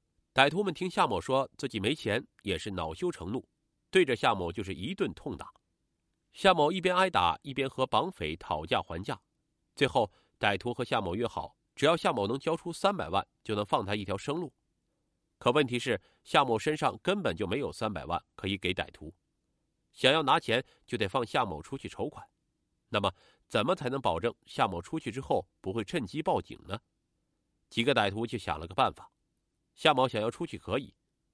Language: Chinese